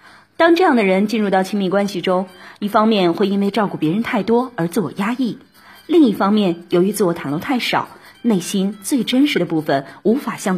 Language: Chinese